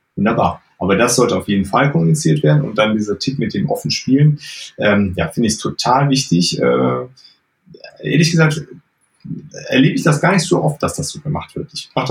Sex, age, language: male, 30-49, German